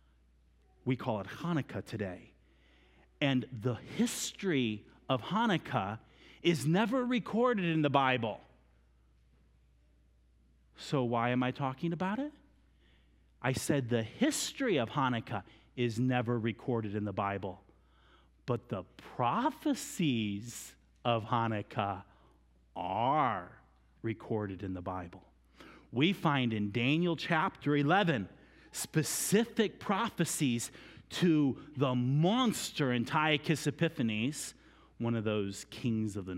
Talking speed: 105 wpm